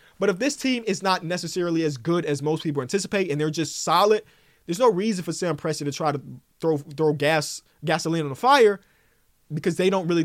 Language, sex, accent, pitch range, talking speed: English, male, American, 150-235 Hz, 215 wpm